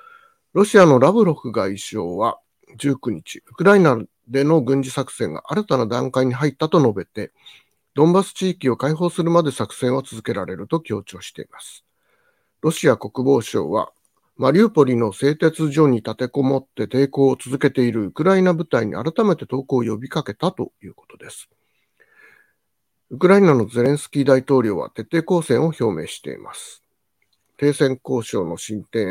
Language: Japanese